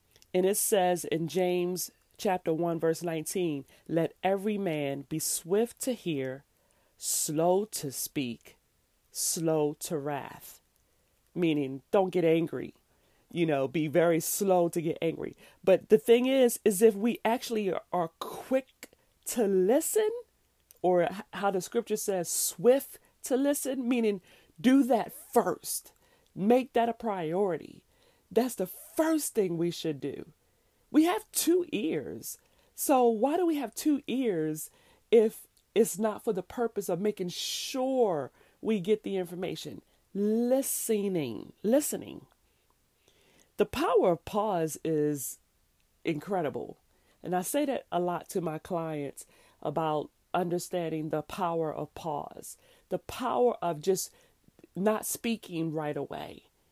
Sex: female